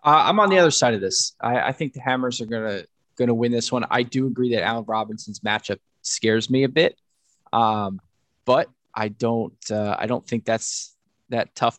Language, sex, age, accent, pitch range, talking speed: English, male, 20-39, American, 105-135 Hz, 210 wpm